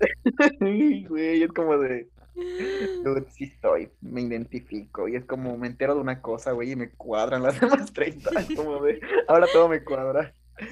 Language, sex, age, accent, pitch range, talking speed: Spanish, male, 20-39, Mexican, 130-175 Hz, 160 wpm